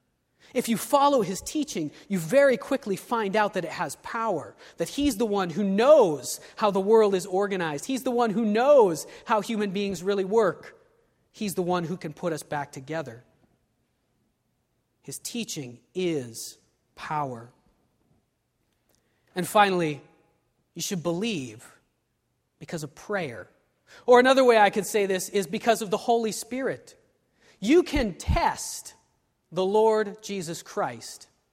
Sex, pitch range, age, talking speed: male, 160-235 Hz, 30-49, 145 wpm